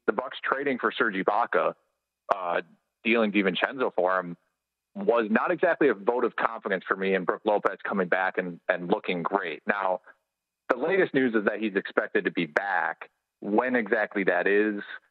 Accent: American